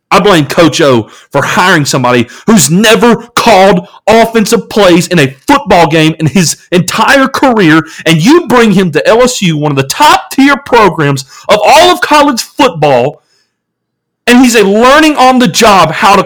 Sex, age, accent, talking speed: male, 40-59, American, 165 wpm